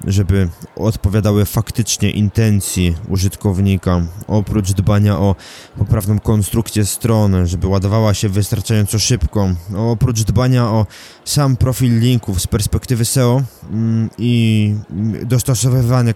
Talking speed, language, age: 100 wpm, Polish, 20-39